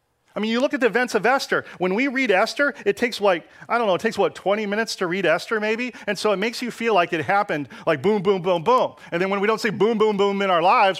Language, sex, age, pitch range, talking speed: English, male, 40-59, 155-240 Hz, 295 wpm